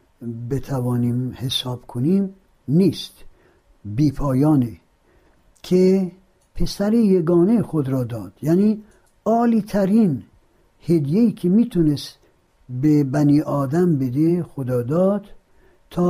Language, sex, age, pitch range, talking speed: Persian, male, 60-79, 125-180 Hz, 85 wpm